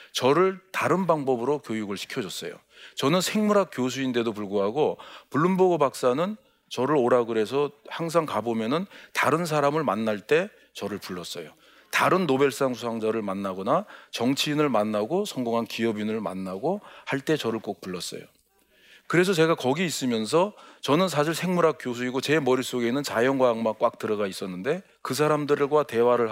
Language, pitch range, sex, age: Korean, 110-155 Hz, male, 40-59